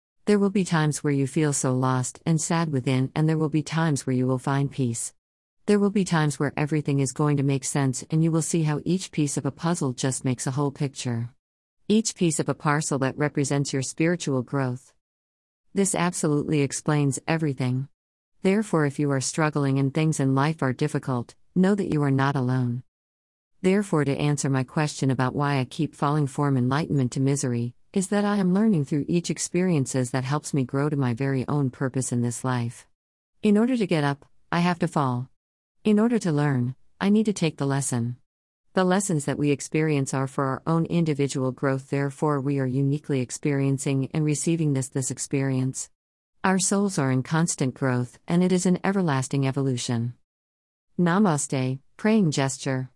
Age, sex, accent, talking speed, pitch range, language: 50-69, female, American, 190 wpm, 130-160 Hz, English